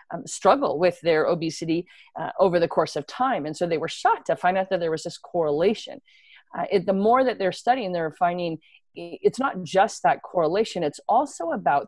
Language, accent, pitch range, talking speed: English, American, 170-225 Hz, 200 wpm